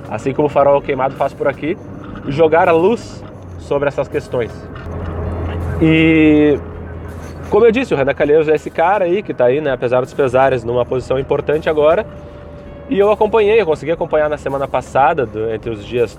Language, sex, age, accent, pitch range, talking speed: Portuguese, male, 20-39, Brazilian, 100-165 Hz, 180 wpm